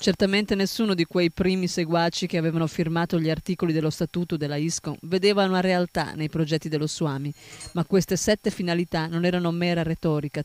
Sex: female